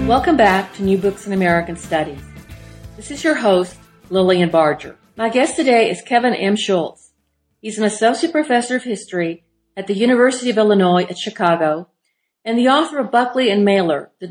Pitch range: 175-235 Hz